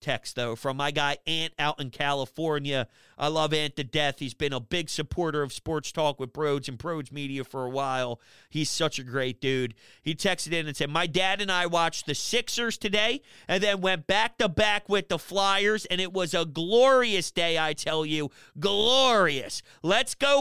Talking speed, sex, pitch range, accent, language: 205 wpm, male, 135-180 Hz, American, English